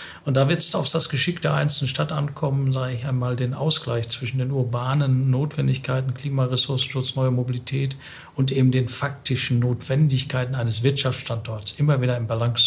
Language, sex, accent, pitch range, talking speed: German, male, German, 125-145 Hz, 160 wpm